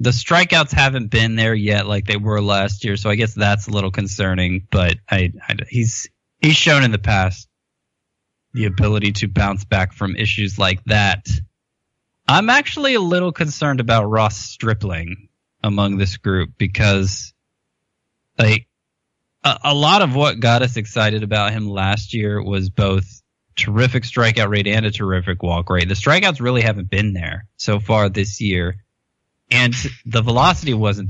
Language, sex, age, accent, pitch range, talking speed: English, male, 20-39, American, 95-120 Hz, 165 wpm